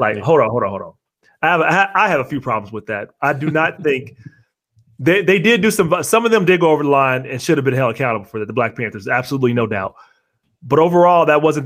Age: 30-49